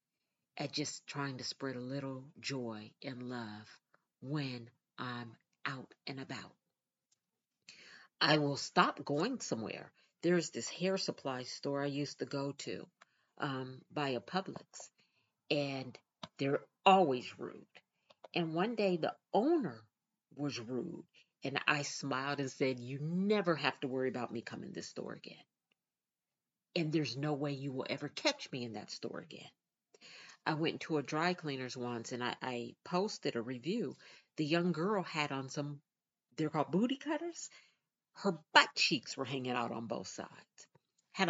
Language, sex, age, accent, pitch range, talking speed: English, female, 50-69, American, 135-180 Hz, 155 wpm